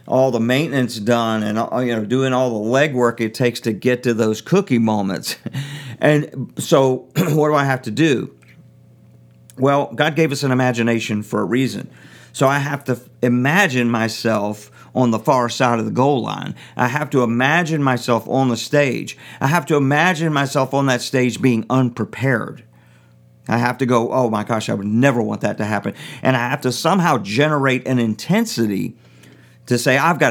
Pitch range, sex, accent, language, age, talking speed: 110-135 Hz, male, American, English, 50-69, 185 wpm